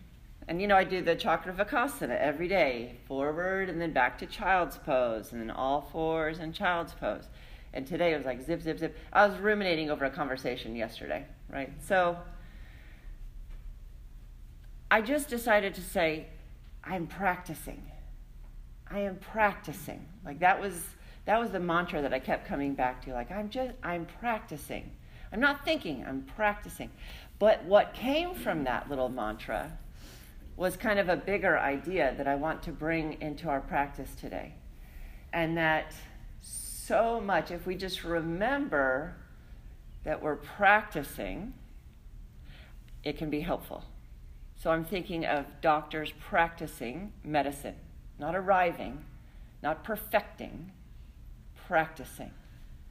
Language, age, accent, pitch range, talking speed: English, 40-59, American, 135-185 Hz, 140 wpm